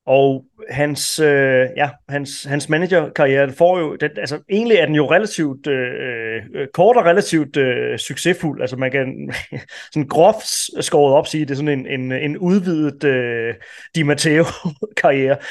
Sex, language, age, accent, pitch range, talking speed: male, Danish, 30-49, native, 130-160 Hz, 155 wpm